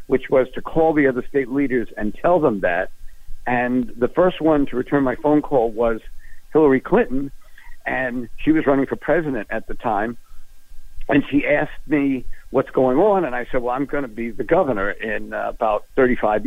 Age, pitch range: 60-79, 125-170 Hz